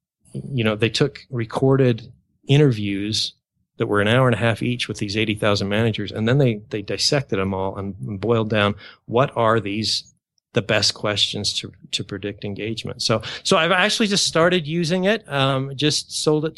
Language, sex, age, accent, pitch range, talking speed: English, male, 30-49, American, 110-135 Hz, 190 wpm